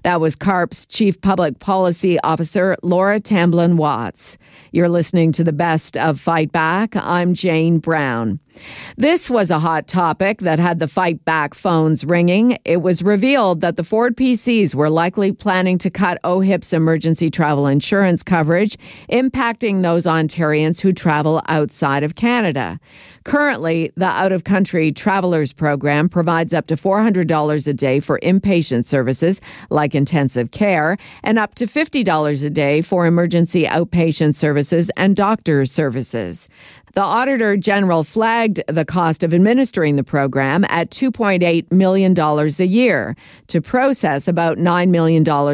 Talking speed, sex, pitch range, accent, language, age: 140 wpm, female, 155-195 Hz, American, English, 50-69